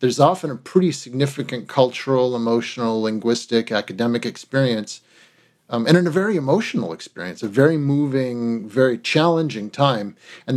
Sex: male